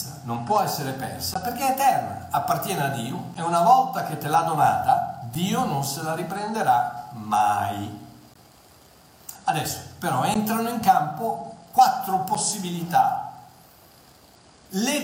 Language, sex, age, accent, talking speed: Italian, male, 60-79, native, 125 wpm